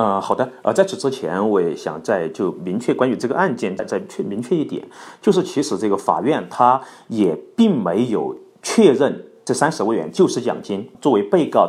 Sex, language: male, Chinese